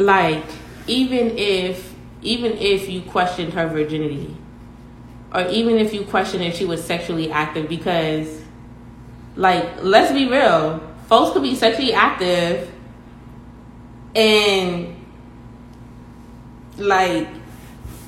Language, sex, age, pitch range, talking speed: English, female, 20-39, 155-200 Hz, 105 wpm